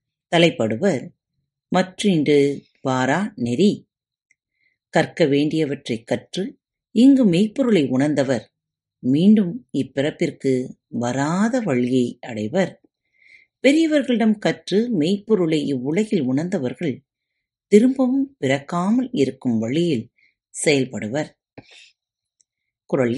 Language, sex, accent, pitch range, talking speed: Tamil, female, native, 130-215 Hz, 60 wpm